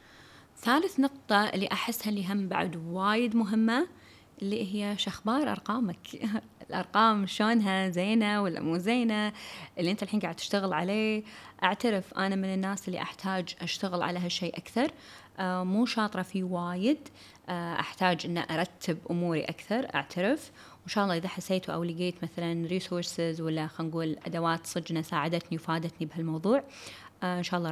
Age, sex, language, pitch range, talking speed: 20-39, female, Arabic, 170-210 Hz, 140 wpm